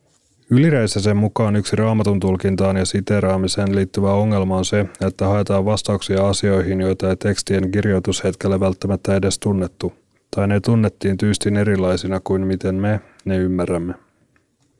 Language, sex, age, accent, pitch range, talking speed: Finnish, male, 30-49, native, 95-110 Hz, 130 wpm